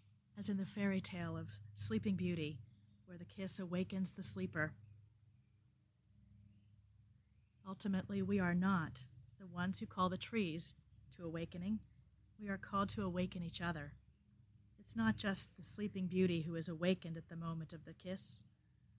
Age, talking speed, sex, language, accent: 40-59, 150 wpm, female, English, American